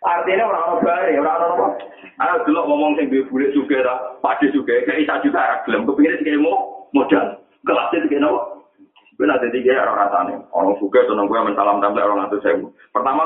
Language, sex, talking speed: Indonesian, male, 165 wpm